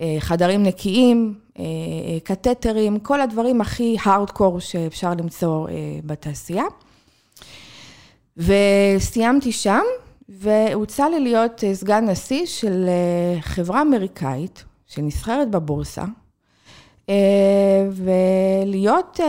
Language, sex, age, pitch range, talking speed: Hebrew, female, 20-39, 175-245 Hz, 70 wpm